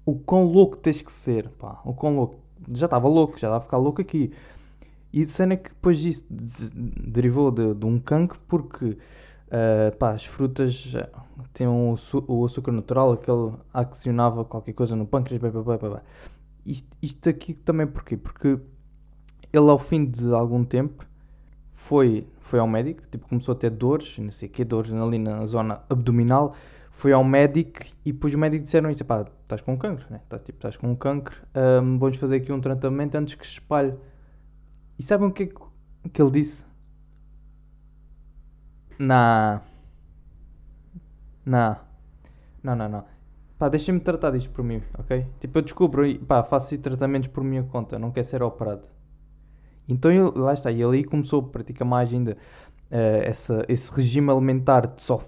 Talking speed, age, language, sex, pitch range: 175 wpm, 20-39, Portuguese, male, 110-140 Hz